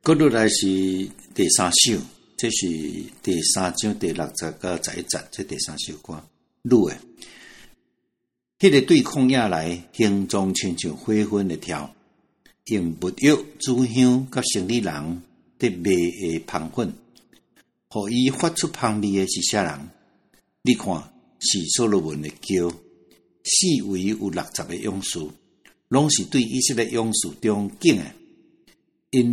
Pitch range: 90-125 Hz